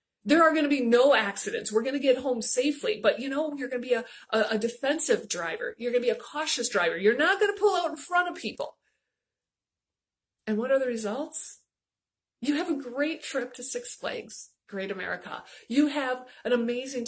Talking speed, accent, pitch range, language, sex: 210 wpm, American, 230-310 Hz, English, female